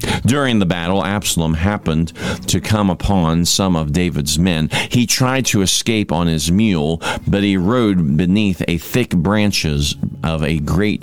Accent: American